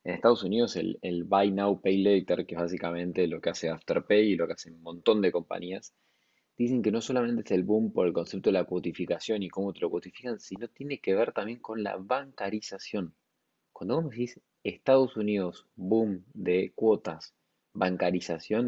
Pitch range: 95-120 Hz